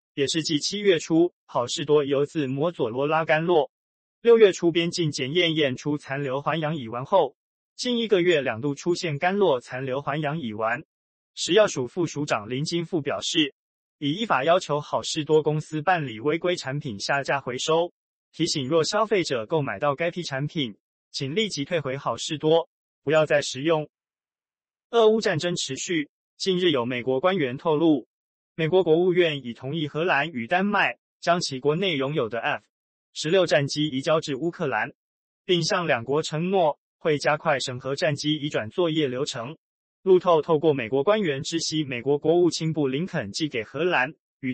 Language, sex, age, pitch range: Chinese, male, 20-39, 140-170 Hz